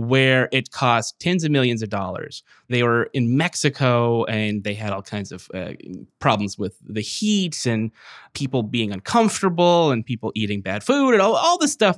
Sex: male